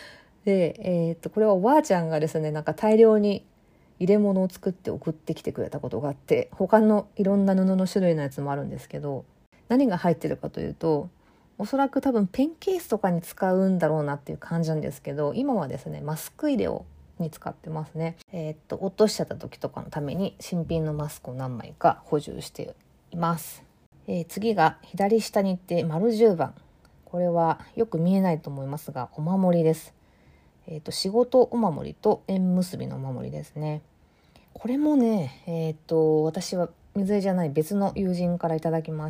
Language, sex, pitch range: Japanese, female, 155-195 Hz